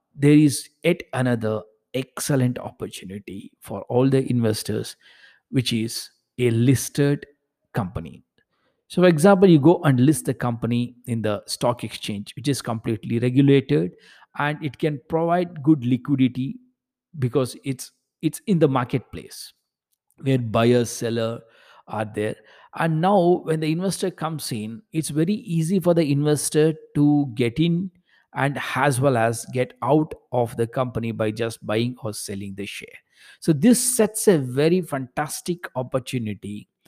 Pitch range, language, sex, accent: 120-155 Hz, English, male, Indian